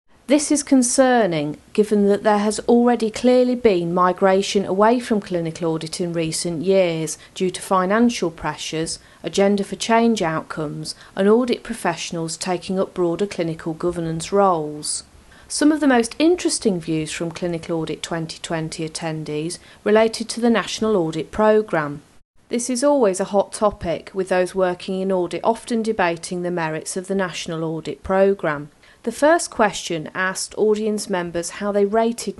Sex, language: female, English